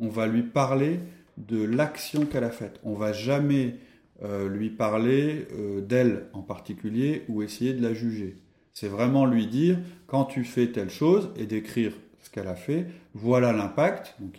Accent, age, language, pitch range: French, 30-49, French, 100-130 Hz